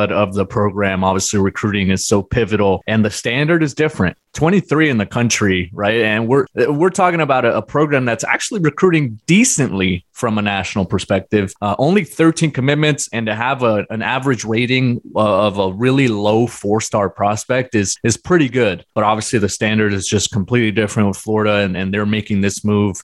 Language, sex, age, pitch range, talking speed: English, male, 20-39, 105-125 Hz, 185 wpm